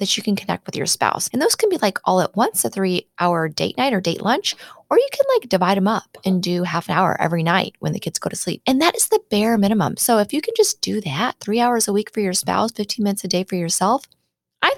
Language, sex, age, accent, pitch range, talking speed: English, female, 20-39, American, 180-240 Hz, 285 wpm